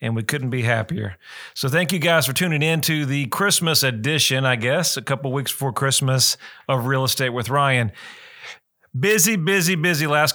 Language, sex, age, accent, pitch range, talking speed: English, male, 40-59, American, 125-155 Hz, 185 wpm